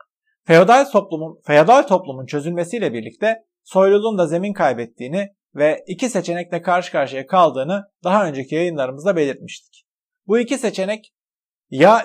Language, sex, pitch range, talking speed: Turkish, male, 160-205 Hz, 120 wpm